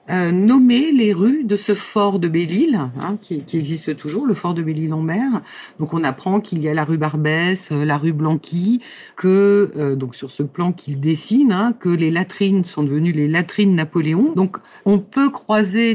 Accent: French